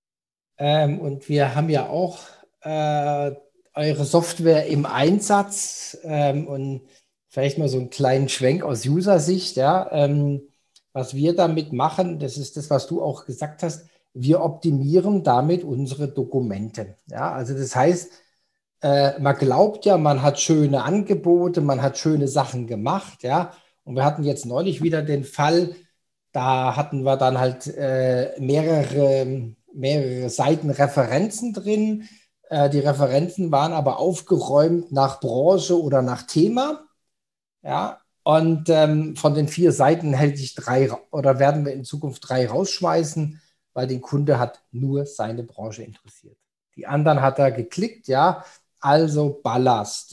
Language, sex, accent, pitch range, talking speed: German, male, German, 135-170 Hz, 145 wpm